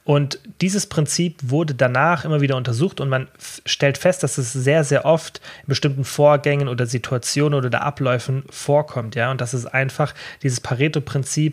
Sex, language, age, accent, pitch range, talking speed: male, German, 30-49, German, 125-145 Hz, 170 wpm